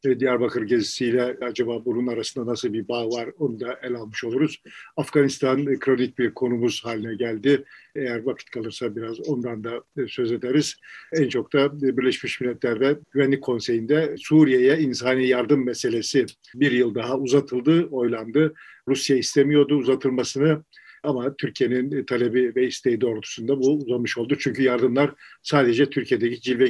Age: 50-69